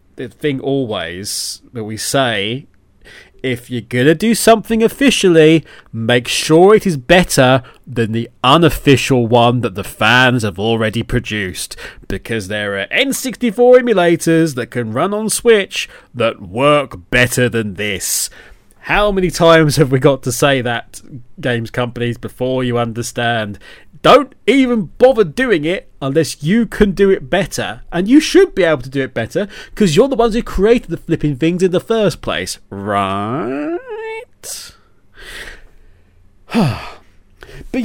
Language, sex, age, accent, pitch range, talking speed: English, male, 30-49, British, 120-180 Hz, 145 wpm